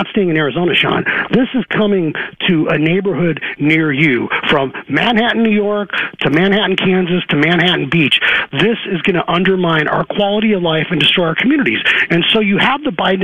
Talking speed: 185 wpm